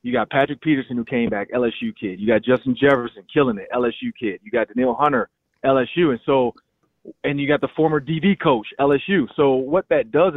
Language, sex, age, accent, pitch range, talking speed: English, male, 30-49, American, 125-150 Hz, 210 wpm